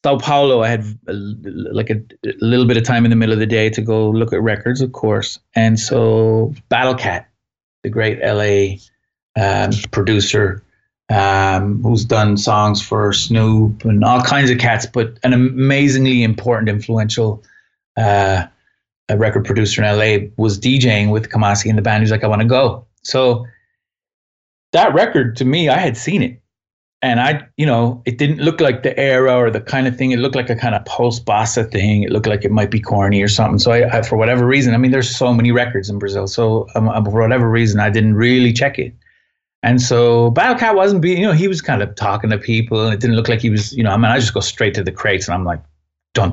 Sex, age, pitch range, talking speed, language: male, 30-49, 105-130 Hz, 220 wpm, English